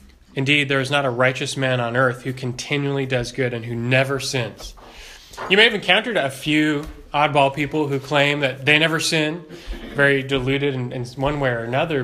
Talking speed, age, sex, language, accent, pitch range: 195 wpm, 20-39, male, English, American, 120-150 Hz